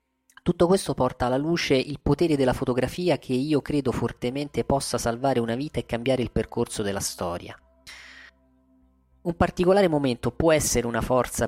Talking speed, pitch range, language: 155 wpm, 115-150 Hz, Italian